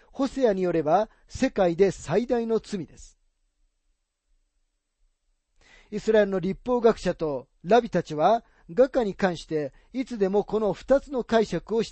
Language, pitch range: Japanese, 170-235 Hz